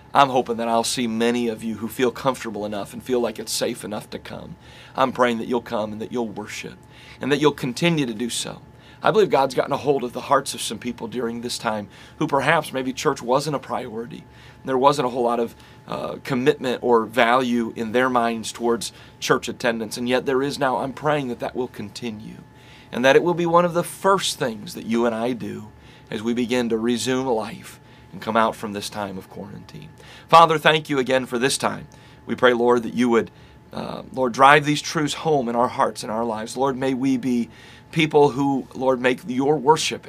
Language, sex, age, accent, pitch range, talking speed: English, male, 40-59, American, 115-140 Hz, 225 wpm